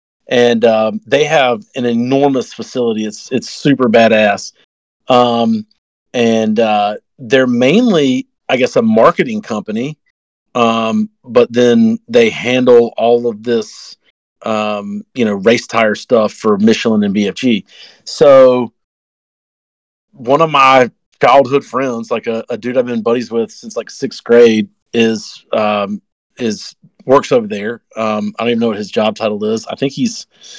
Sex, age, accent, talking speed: male, 40-59, American, 150 wpm